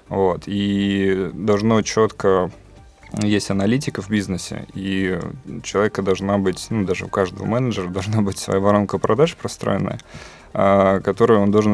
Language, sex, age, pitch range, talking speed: Russian, male, 20-39, 95-110 Hz, 140 wpm